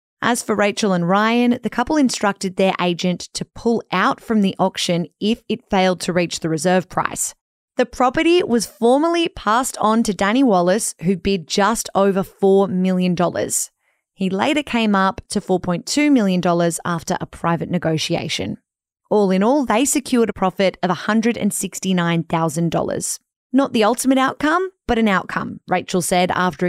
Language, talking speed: English, 155 wpm